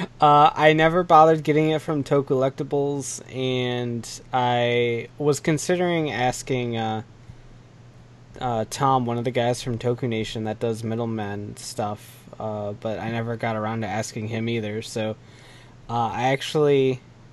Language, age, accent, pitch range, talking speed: English, 20-39, American, 115-135 Hz, 140 wpm